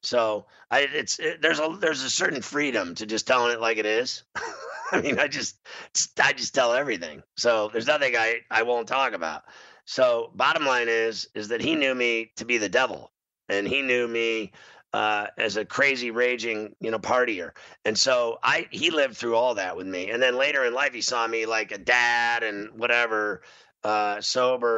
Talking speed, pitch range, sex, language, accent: 200 wpm, 105-125 Hz, male, English, American